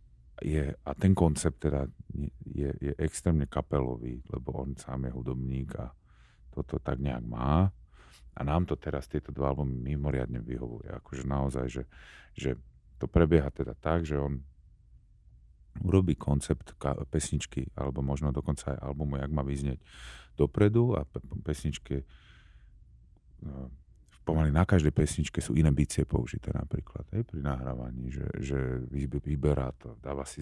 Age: 40-59